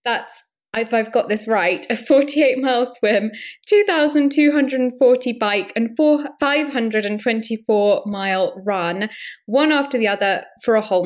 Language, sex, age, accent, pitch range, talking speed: English, female, 10-29, British, 195-255 Hz, 115 wpm